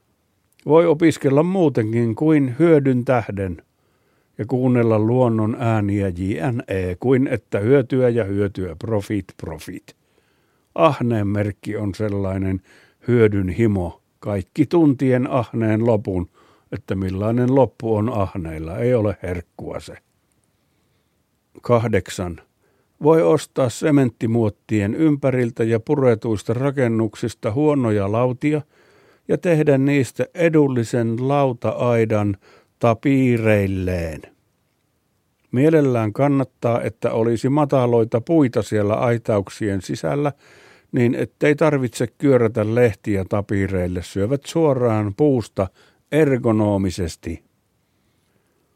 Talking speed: 90 wpm